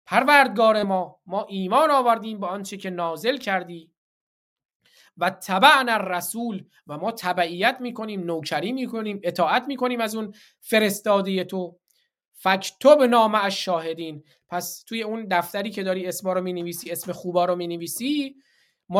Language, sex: Persian, male